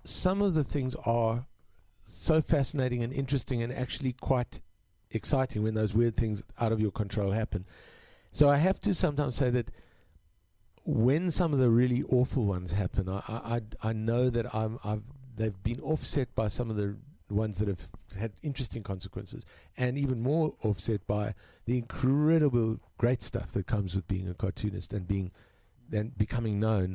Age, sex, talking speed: 50-69, male, 165 wpm